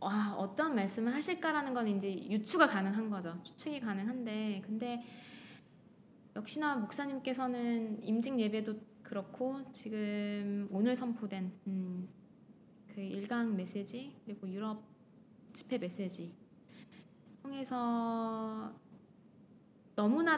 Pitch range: 195-250 Hz